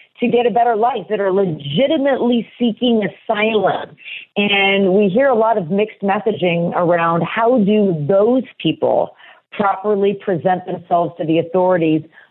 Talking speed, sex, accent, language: 140 wpm, female, American, English